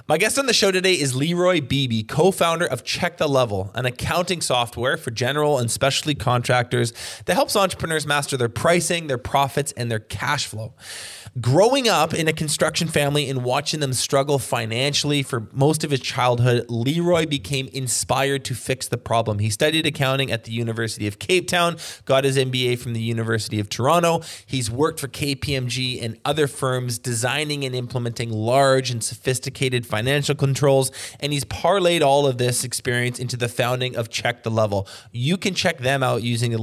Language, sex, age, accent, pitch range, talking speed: English, male, 20-39, American, 120-145 Hz, 180 wpm